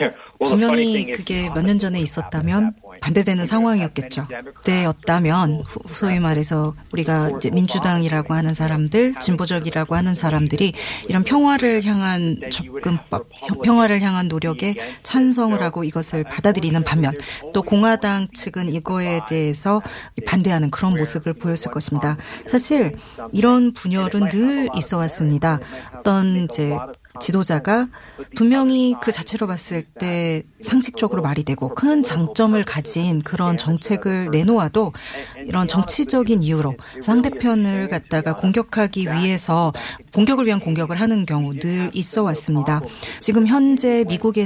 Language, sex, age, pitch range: Korean, female, 30-49, 160-225 Hz